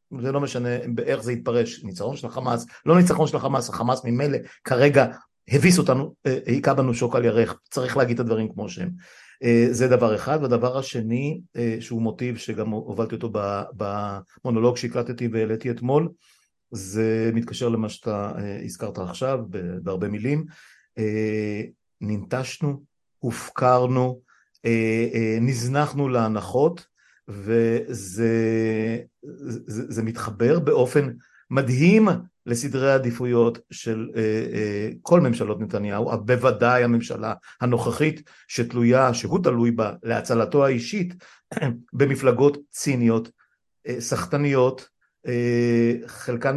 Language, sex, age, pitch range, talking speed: Hebrew, male, 50-69, 115-135 Hz, 105 wpm